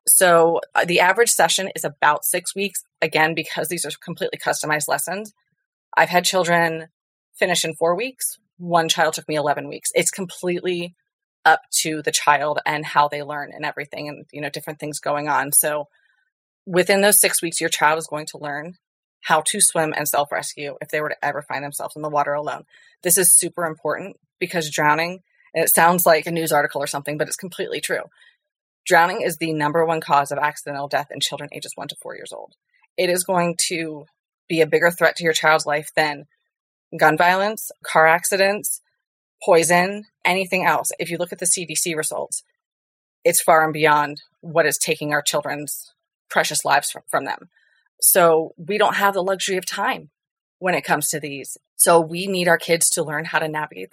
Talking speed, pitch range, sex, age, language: 190 wpm, 150-185 Hz, female, 30-49, English